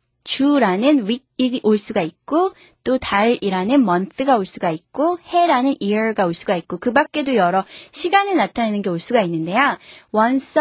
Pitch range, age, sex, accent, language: 205-315 Hz, 20-39, female, native, Korean